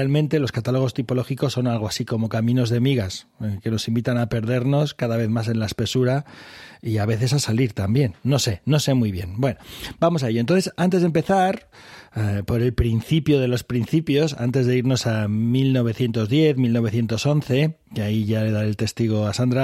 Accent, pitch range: Spanish, 115-140 Hz